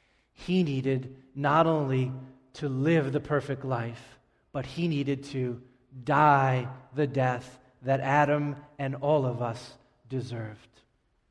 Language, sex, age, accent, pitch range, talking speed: English, male, 30-49, American, 130-155 Hz, 120 wpm